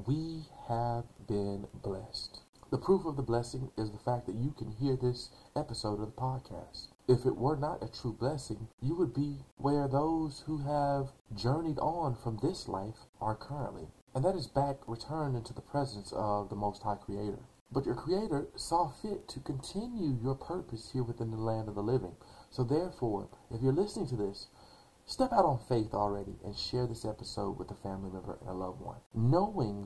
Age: 40-59